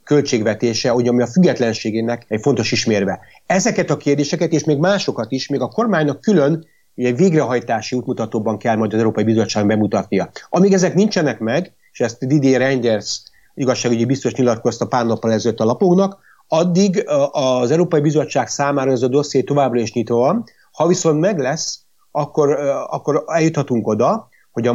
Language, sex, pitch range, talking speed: Hungarian, male, 115-155 Hz, 160 wpm